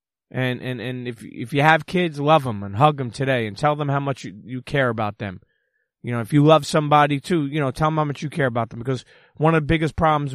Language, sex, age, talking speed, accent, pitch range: English, male, 30-49, 275 wpm, American, 120-145 Hz